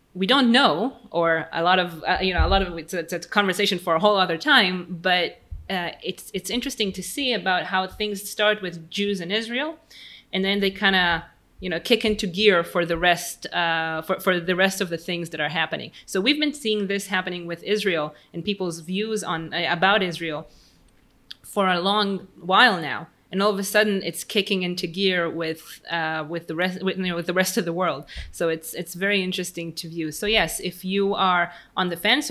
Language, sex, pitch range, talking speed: English, female, 170-205 Hz, 215 wpm